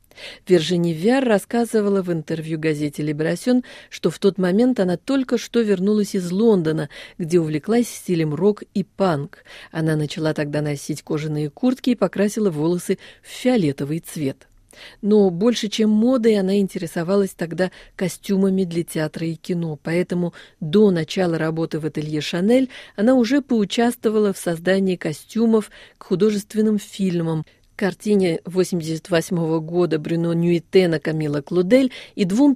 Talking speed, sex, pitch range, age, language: 135 wpm, female, 160-215 Hz, 40-59, Russian